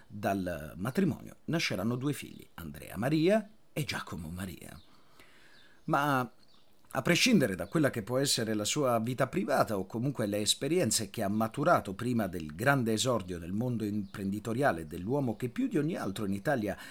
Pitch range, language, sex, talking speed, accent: 100-155 Hz, Italian, male, 155 wpm, native